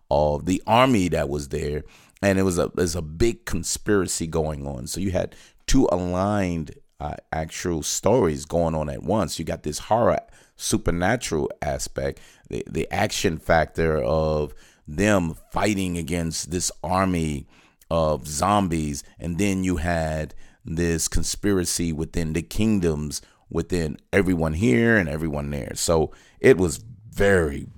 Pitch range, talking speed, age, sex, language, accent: 80-100 Hz, 145 wpm, 30-49, male, English, American